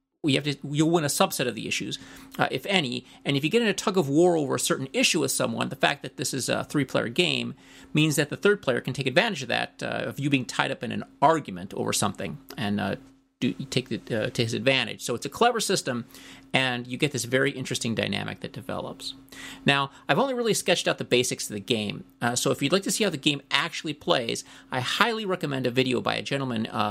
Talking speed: 255 wpm